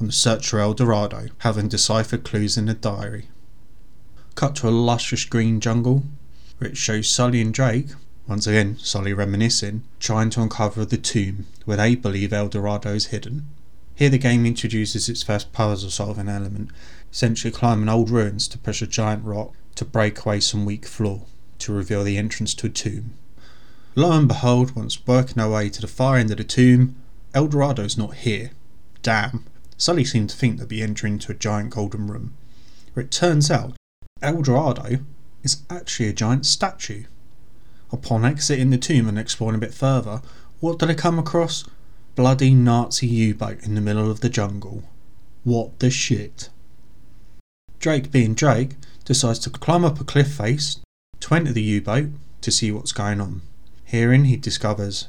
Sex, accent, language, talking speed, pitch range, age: male, British, English, 175 wpm, 105-130 Hz, 20-39